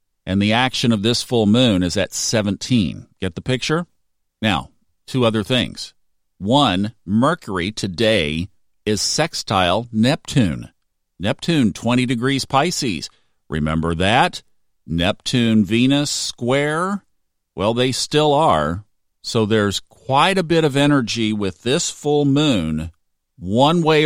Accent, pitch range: American, 95-130 Hz